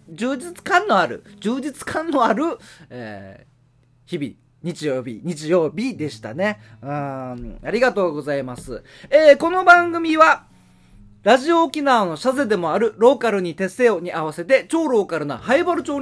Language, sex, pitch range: Japanese, male, 180-300 Hz